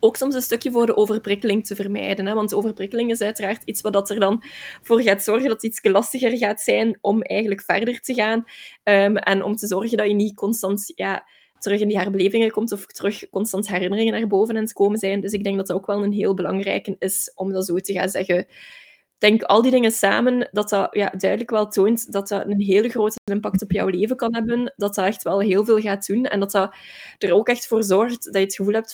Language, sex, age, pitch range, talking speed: Dutch, female, 20-39, 195-225 Hz, 245 wpm